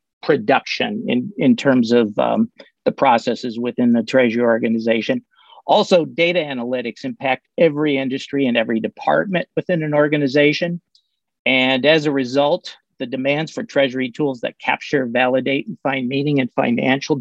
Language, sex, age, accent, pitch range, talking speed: English, male, 50-69, American, 130-150 Hz, 145 wpm